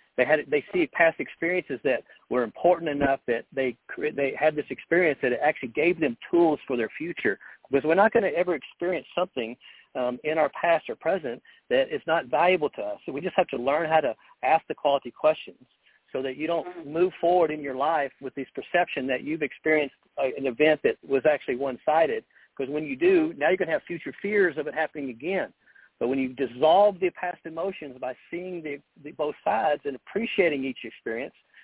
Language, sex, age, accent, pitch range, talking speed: English, male, 50-69, American, 135-175 Hz, 210 wpm